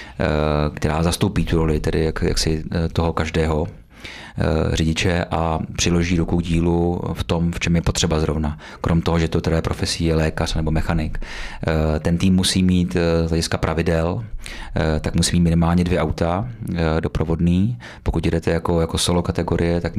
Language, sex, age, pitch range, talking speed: Czech, male, 30-49, 80-85 Hz, 160 wpm